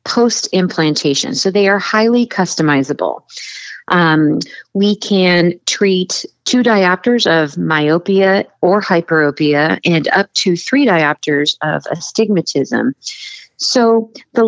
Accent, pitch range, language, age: American, 160-215 Hz, English, 40-59